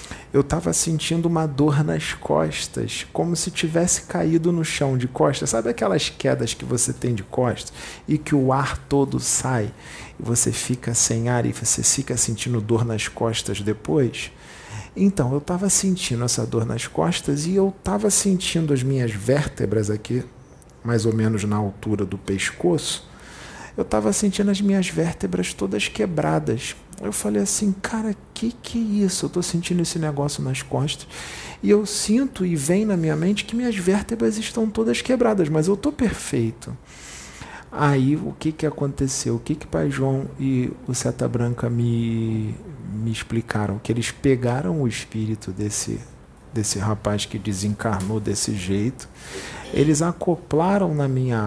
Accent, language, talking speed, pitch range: Brazilian, English, 165 wpm, 110-170 Hz